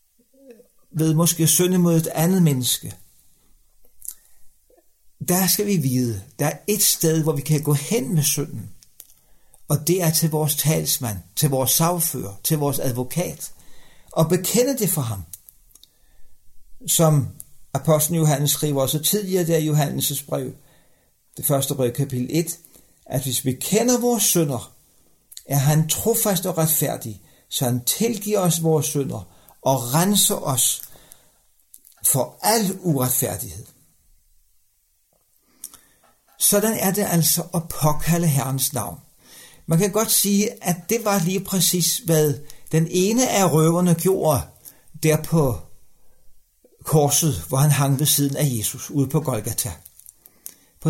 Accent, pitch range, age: native, 130-180 Hz, 60-79